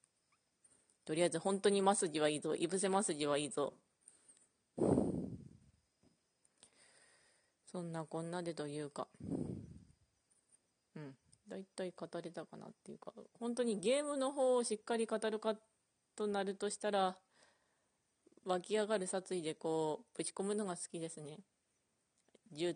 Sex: female